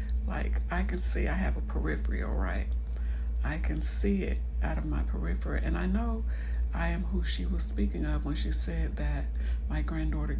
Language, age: English, 60-79